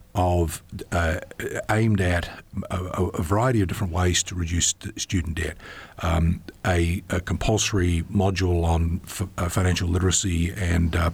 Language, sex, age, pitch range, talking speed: English, male, 50-69, 85-100 Hz, 145 wpm